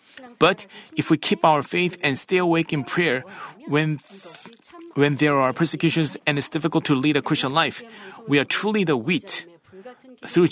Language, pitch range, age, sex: Korean, 145-175 Hz, 40-59, male